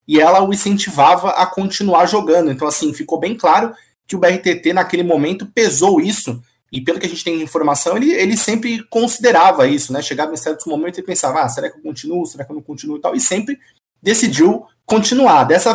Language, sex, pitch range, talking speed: Portuguese, male, 130-195 Hz, 215 wpm